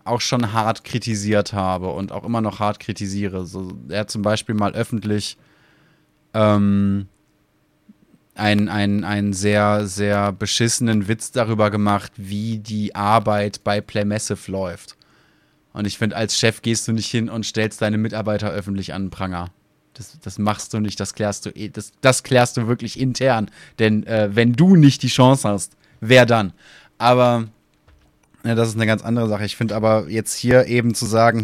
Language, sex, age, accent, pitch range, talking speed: German, male, 20-39, German, 105-130 Hz, 160 wpm